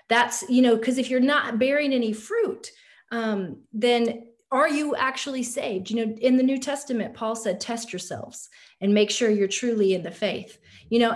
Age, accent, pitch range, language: 40-59, American, 200-250 Hz, English